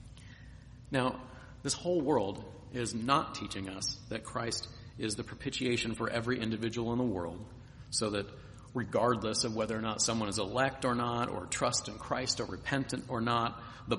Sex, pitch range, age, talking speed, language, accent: male, 105-125 Hz, 40-59, 170 wpm, English, American